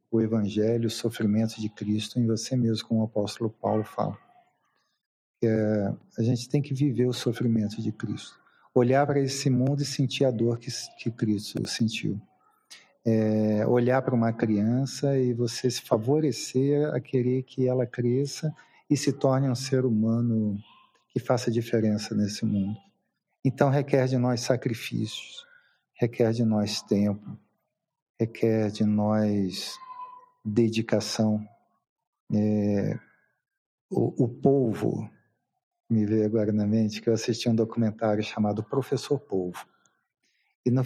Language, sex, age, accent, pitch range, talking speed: Portuguese, male, 50-69, Brazilian, 110-130 Hz, 135 wpm